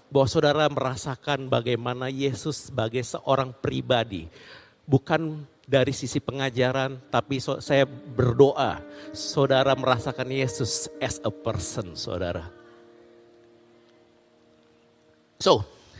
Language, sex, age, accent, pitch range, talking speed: Indonesian, male, 50-69, native, 120-155 Hz, 85 wpm